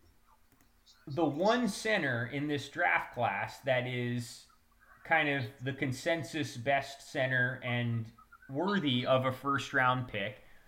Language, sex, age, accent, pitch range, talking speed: English, male, 20-39, American, 120-165 Hz, 120 wpm